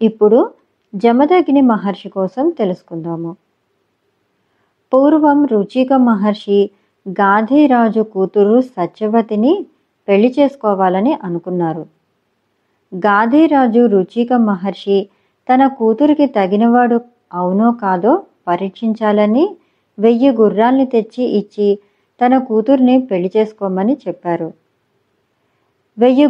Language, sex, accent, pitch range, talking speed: Telugu, male, native, 195-250 Hz, 55 wpm